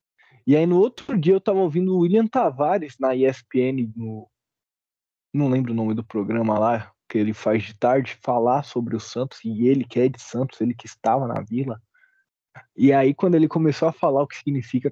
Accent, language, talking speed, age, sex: Brazilian, Portuguese, 205 wpm, 20-39, male